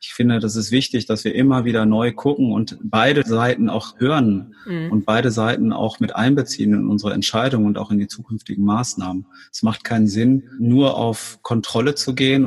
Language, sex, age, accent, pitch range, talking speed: German, male, 30-49, German, 105-125 Hz, 195 wpm